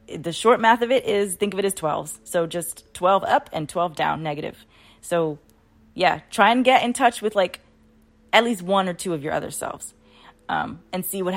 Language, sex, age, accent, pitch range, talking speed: English, female, 20-39, American, 160-220 Hz, 215 wpm